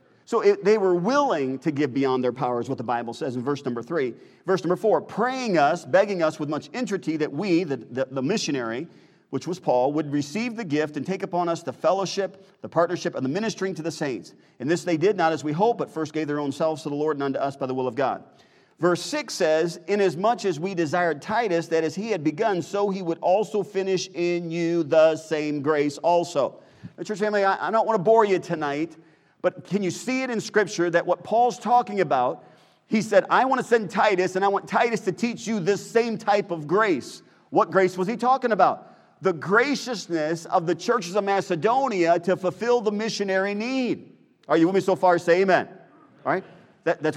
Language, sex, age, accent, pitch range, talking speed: English, male, 40-59, American, 155-210 Hz, 225 wpm